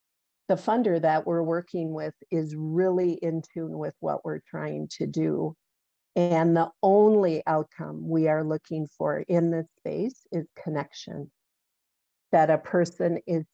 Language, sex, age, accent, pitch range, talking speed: English, female, 50-69, American, 160-180 Hz, 145 wpm